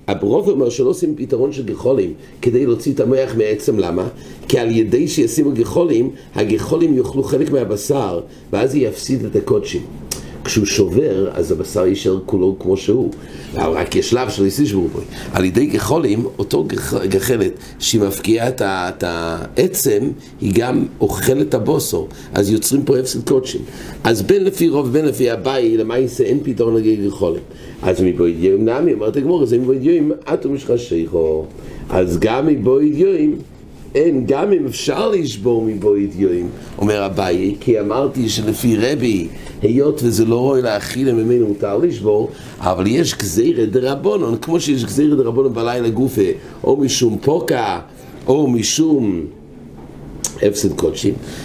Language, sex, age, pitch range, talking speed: English, male, 60-79, 100-140 Hz, 105 wpm